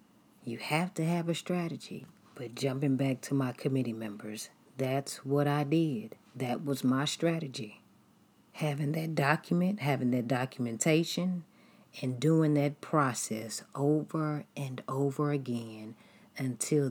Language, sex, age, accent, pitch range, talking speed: English, female, 40-59, American, 130-175 Hz, 130 wpm